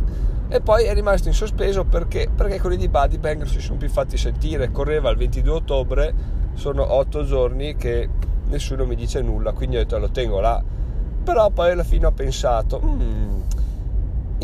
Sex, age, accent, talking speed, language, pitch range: male, 30-49, native, 175 wpm, Italian, 90-135 Hz